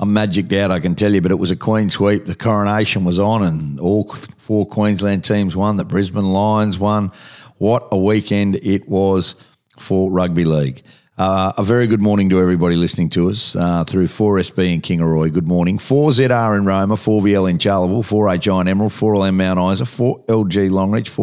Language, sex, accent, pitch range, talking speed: English, male, Australian, 90-105 Hz, 190 wpm